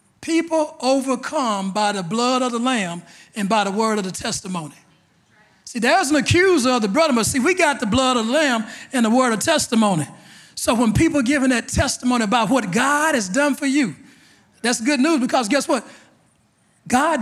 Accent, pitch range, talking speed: American, 205-265 Hz, 200 wpm